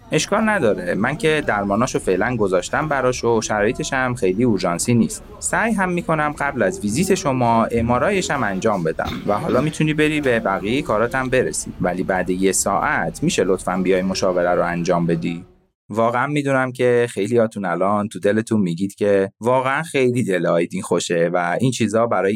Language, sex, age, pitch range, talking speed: Persian, male, 30-49, 100-135 Hz, 160 wpm